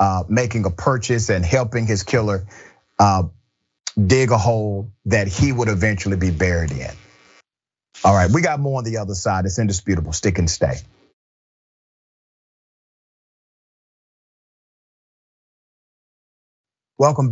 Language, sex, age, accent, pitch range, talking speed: English, male, 40-59, American, 100-135 Hz, 120 wpm